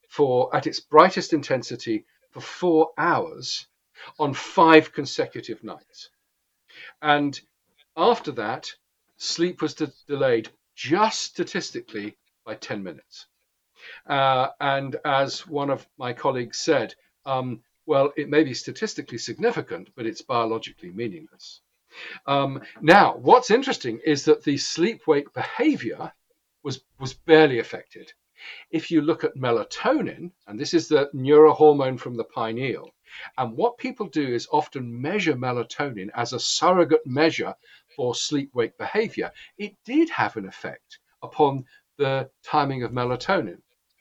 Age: 50-69